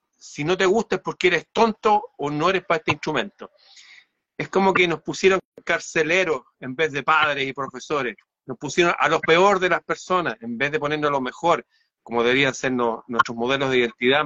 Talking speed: 205 wpm